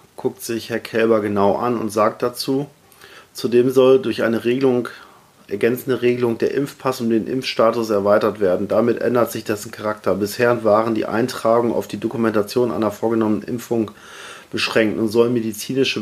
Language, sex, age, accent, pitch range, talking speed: German, male, 40-59, German, 110-125 Hz, 155 wpm